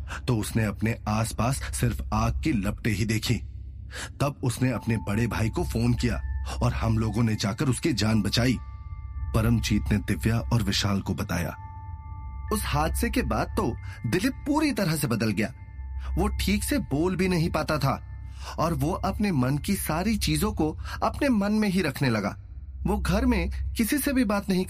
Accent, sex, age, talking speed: native, male, 30-49, 180 wpm